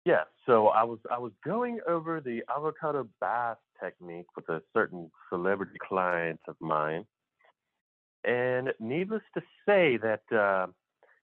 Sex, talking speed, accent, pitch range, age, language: male, 130 wpm, American, 125-200 Hz, 50-69, English